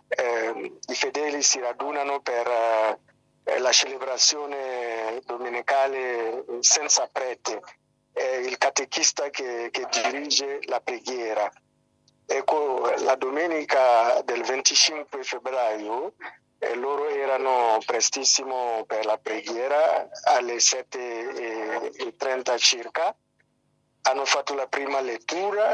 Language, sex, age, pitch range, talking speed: Italian, male, 50-69, 120-150 Hz, 90 wpm